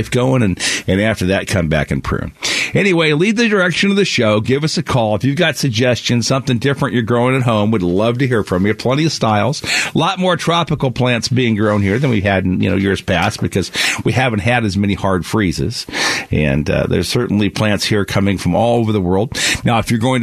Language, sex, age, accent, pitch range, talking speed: English, male, 50-69, American, 100-130 Hz, 235 wpm